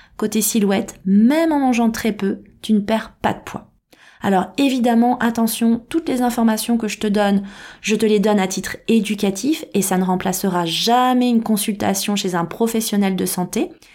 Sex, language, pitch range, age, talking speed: female, French, 195-230 Hz, 20-39, 180 wpm